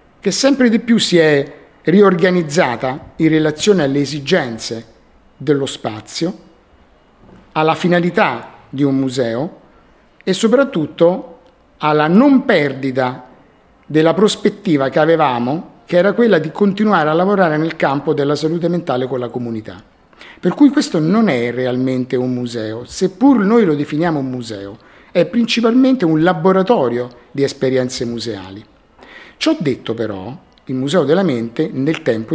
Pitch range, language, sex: 130-185 Hz, Italian, male